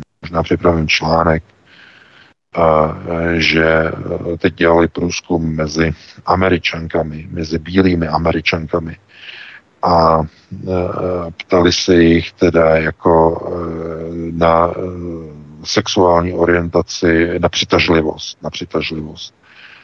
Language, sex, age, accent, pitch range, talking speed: Czech, male, 50-69, native, 80-95 Hz, 75 wpm